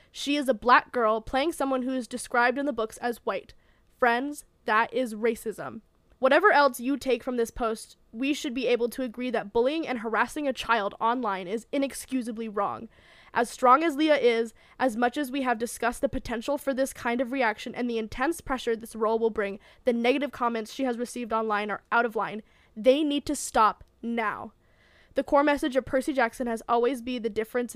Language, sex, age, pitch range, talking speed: English, female, 10-29, 225-265 Hz, 205 wpm